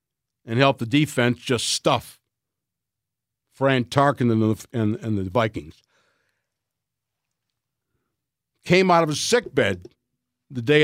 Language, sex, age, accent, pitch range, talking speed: English, male, 60-79, American, 120-150 Hz, 100 wpm